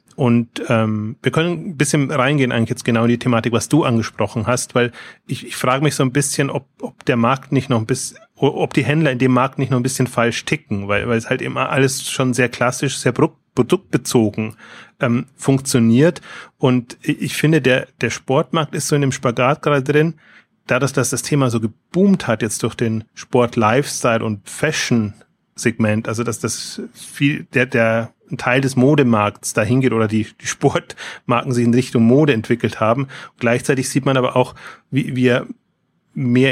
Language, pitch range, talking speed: German, 115-135 Hz, 195 wpm